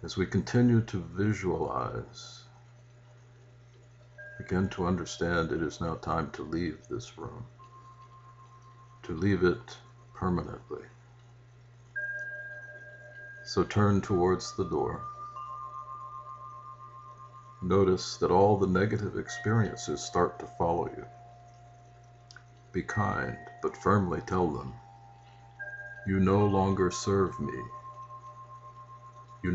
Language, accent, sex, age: English, American, male, 60-79